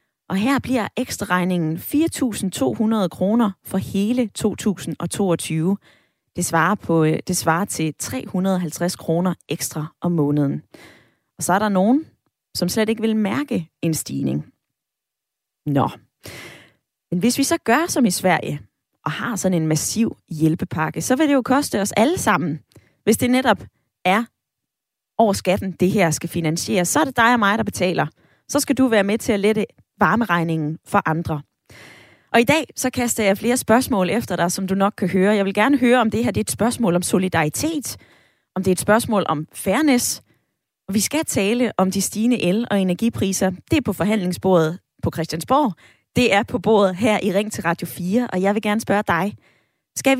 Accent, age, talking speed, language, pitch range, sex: native, 20-39, 180 wpm, Danish, 170-230 Hz, female